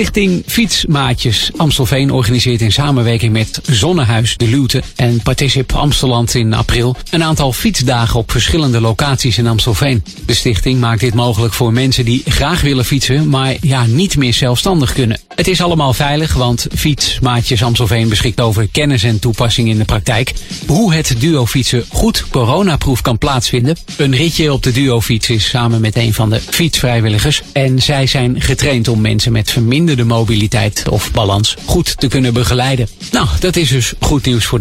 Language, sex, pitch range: Dutch, male, 115-140 Hz